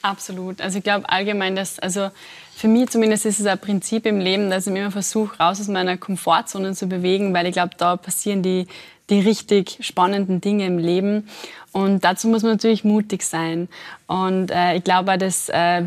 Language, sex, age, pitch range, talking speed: German, female, 20-39, 180-205 Hz, 195 wpm